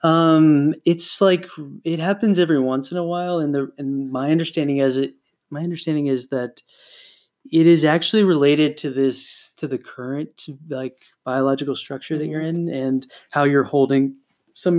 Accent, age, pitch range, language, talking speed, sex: American, 20-39, 130-160 Hz, English, 165 wpm, male